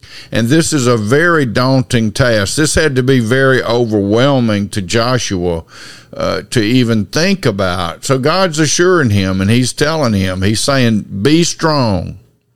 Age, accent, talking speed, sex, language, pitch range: 50-69, American, 155 wpm, male, English, 110-140 Hz